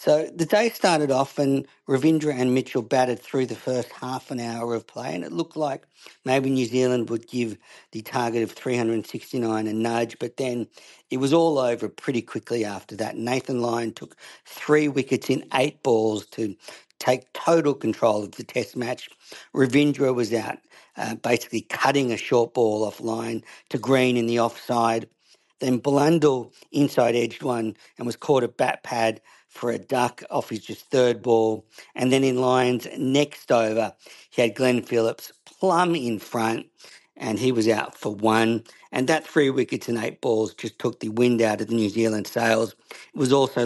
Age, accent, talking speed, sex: 50-69, Australian, 180 wpm, male